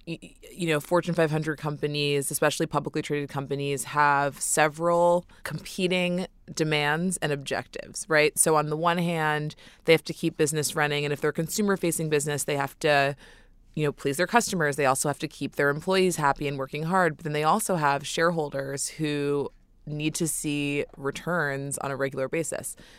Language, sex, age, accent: English, female, 20-39, American